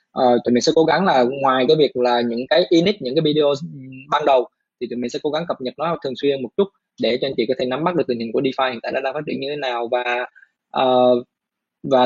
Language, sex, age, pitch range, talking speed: Vietnamese, male, 20-39, 120-150 Hz, 280 wpm